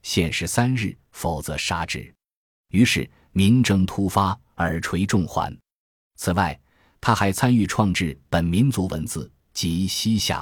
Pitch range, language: 85-115 Hz, Chinese